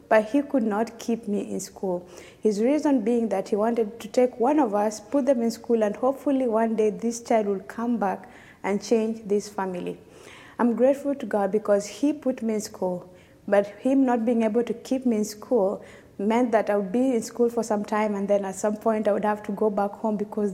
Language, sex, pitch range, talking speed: English, female, 200-235 Hz, 230 wpm